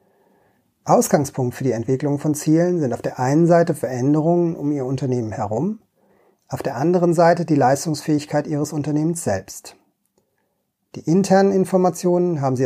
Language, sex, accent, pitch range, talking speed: German, male, German, 135-170 Hz, 140 wpm